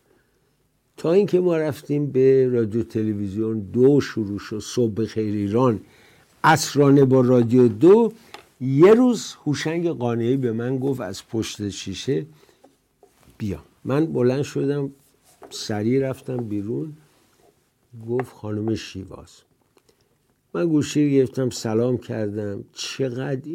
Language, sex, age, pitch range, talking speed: English, male, 60-79, 115-145 Hz, 105 wpm